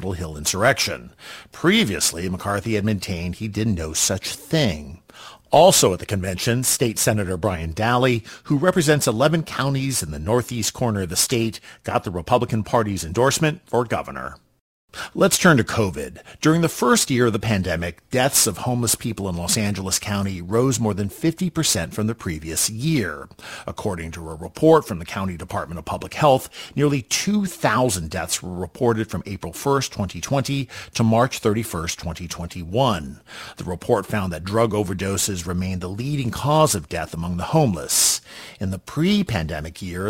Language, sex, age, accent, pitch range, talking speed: English, male, 50-69, American, 90-125 Hz, 160 wpm